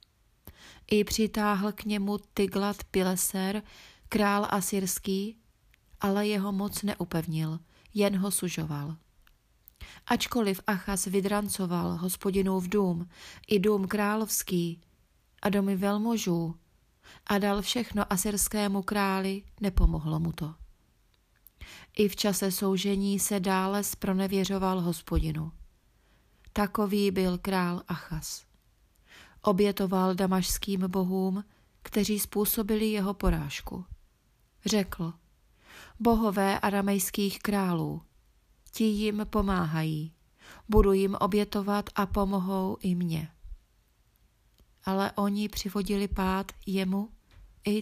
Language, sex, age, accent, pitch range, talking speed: Czech, female, 30-49, native, 180-205 Hz, 95 wpm